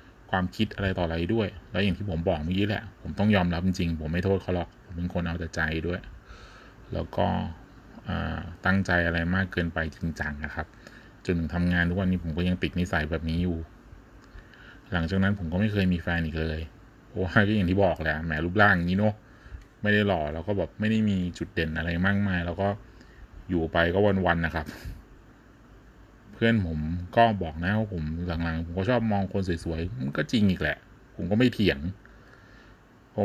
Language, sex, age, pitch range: Thai, male, 20-39, 85-105 Hz